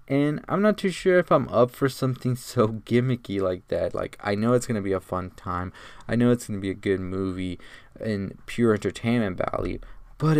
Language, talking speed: English, 220 wpm